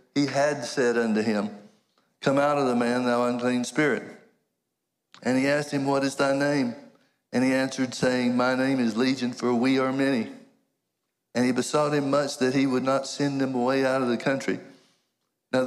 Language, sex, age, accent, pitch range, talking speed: English, male, 60-79, American, 125-140 Hz, 190 wpm